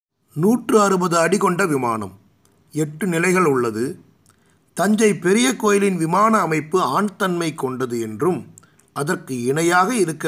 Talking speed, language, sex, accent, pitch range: 115 wpm, Tamil, male, native, 135-185 Hz